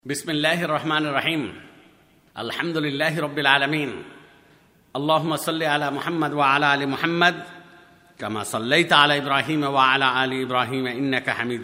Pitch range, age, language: 130-170 Hz, 50-69, Bengali